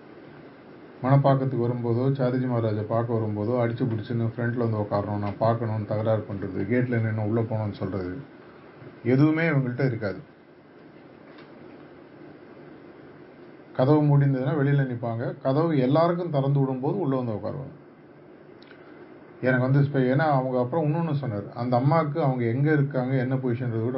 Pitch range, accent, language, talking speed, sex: 115-140 Hz, native, Tamil, 95 wpm, male